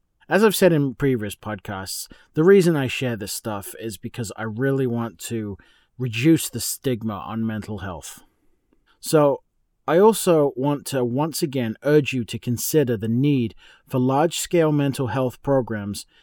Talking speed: 160 wpm